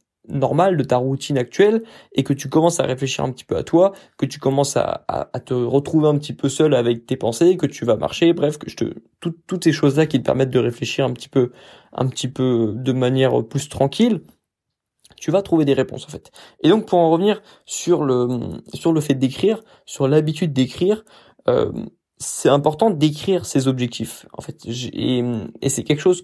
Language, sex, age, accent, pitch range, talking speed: French, male, 20-39, French, 130-160 Hz, 210 wpm